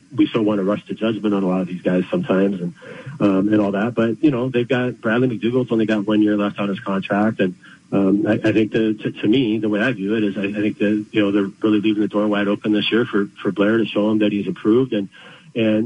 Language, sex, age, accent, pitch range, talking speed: English, male, 40-59, American, 95-110 Hz, 285 wpm